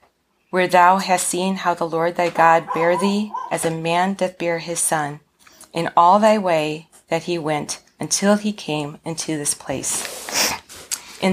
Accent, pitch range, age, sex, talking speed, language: American, 160-190 Hz, 40-59, female, 170 wpm, English